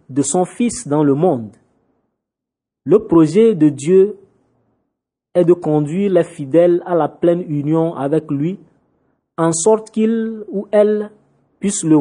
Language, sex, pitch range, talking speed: French, male, 145-180 Hz, 140 wpm